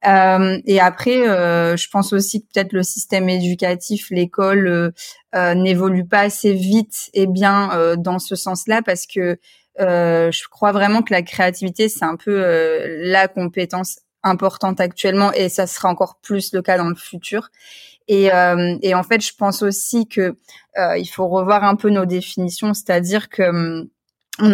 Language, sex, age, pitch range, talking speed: French, female, 20-39, 180-200 Hz, 175 wpm